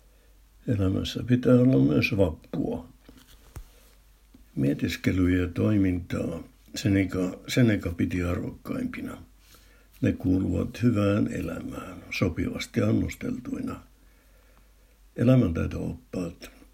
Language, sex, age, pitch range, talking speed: Finnish, male, 60-79, 90-115 Hz, 70 wpm